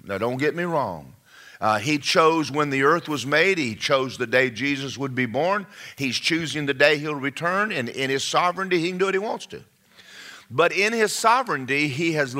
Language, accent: English, American